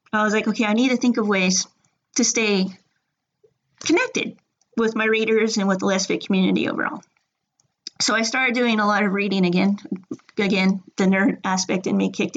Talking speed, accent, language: 185 wpm, American, English